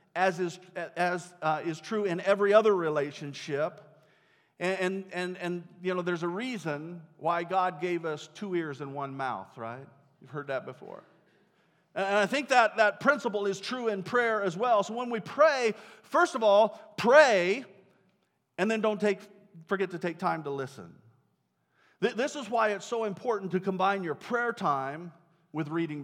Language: English